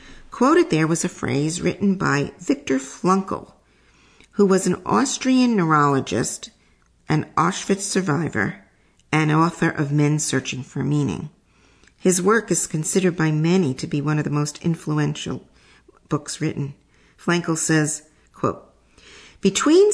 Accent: American